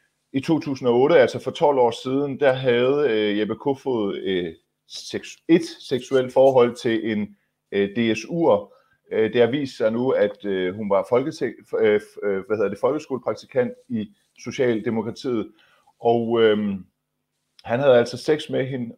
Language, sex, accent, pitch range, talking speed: Danish, male, native, 110-140 Hz, 110 wpm